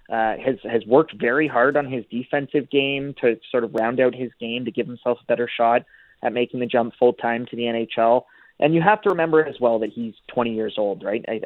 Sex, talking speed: male, 235 wpm